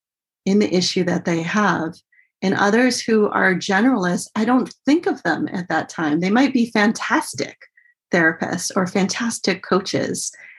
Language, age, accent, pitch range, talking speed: English, 30-49, American, 165-205 Hz, 155 wpm